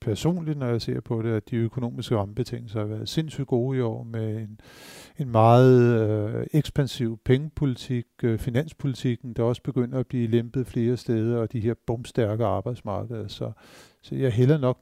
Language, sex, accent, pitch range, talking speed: Danish, male, native, 110-130 Hz, 175 wpm